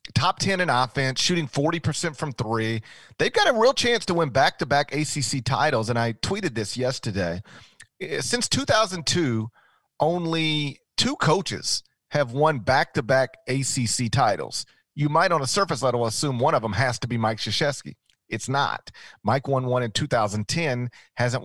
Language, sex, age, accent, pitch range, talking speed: English, male, 40-59, American, 115-145 Hz, 155 wpm